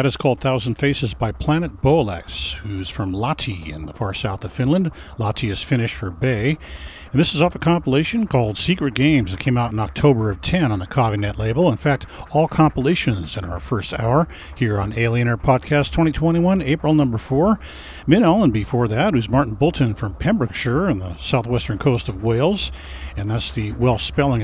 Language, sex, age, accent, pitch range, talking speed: English, male, 50-69, American, 105-140 Hz, 190 wpm